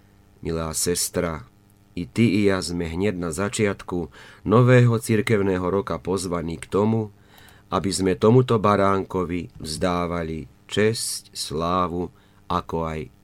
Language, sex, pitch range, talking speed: Slovak, male, 85-105 Hz, 115 wpm